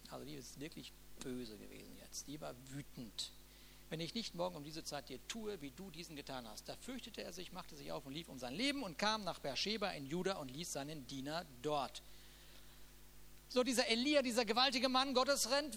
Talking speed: 210 wpm